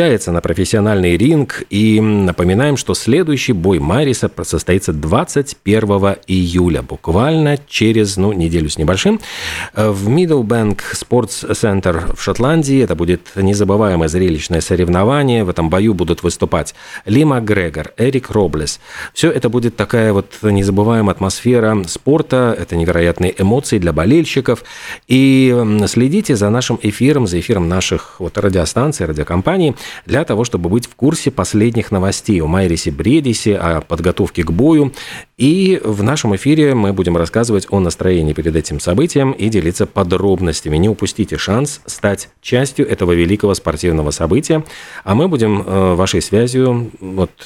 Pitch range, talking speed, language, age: 90-120 Hz, 135 wpm, Russian, 40-59